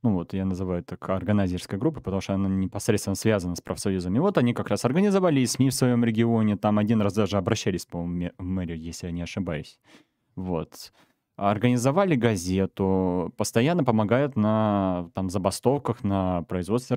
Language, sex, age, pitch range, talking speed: Russian, male, 20-39, 95-120 Hz, 160 wpm